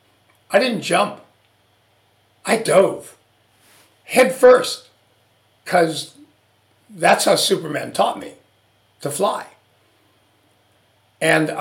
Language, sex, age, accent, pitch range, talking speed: English, male, 60-79, American, 150-210 Hz, 85 wpm